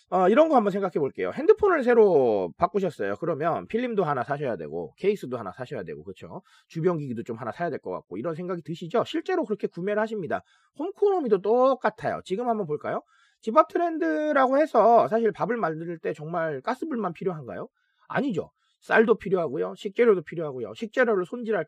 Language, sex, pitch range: Korean, male, 185-270 Hz